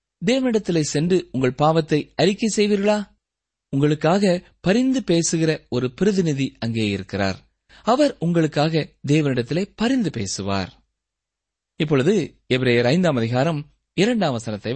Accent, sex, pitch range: native, male, 120-195 Hz